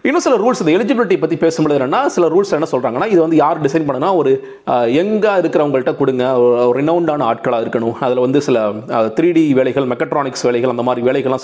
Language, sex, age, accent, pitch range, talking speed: Tamil, male, 30-49, native, 130-185 Hz, 185 wpm